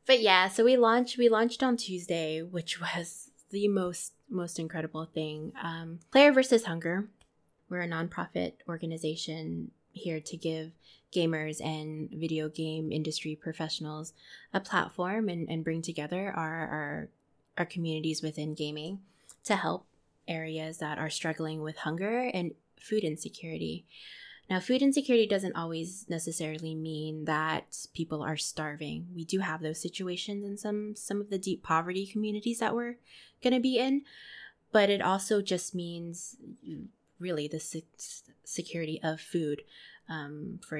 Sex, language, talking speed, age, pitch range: female, English, 145 wpm, 20-39, 155-195 Hz